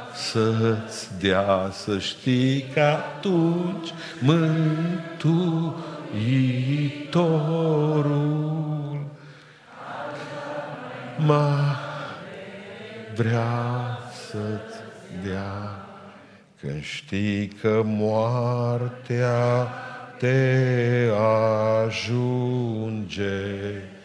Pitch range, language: 120-155 Hz, Romanian